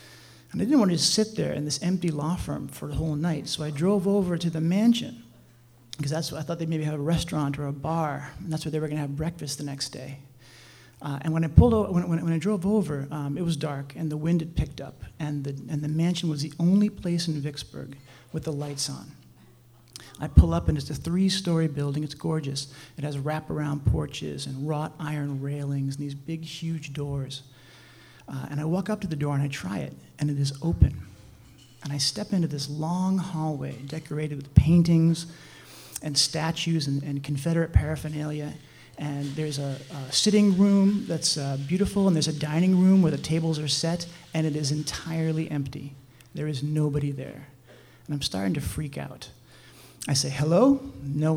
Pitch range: 140-165 Hz